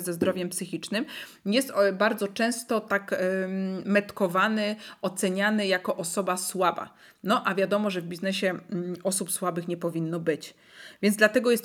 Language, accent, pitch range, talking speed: Polish, native, 185-230 Hz, 135 wpm